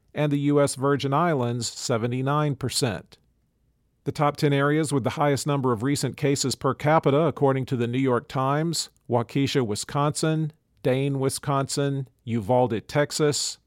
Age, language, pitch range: 40-59, English, 120-145 Hz